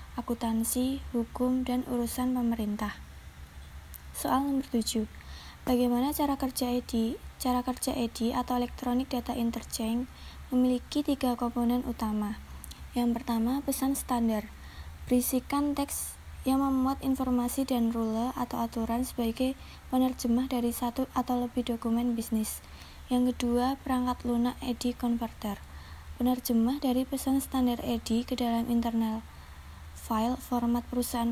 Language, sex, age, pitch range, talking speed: Indonesian, female, 20-39, 230-255 Hz, 115 wpm